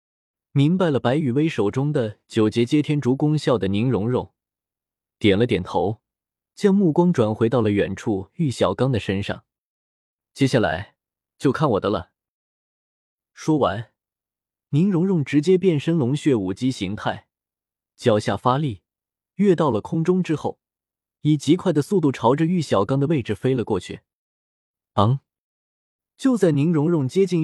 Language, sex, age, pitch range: Chinese, male, 20-39, 110-160 Hz